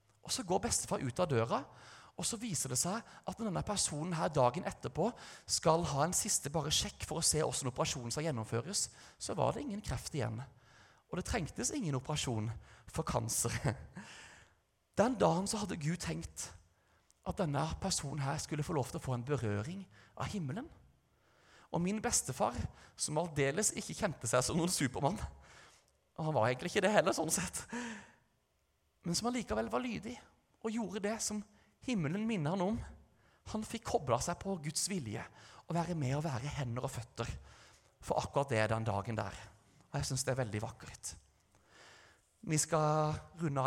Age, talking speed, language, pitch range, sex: 30-49, 175 wpm, English, 120-175 Hz, male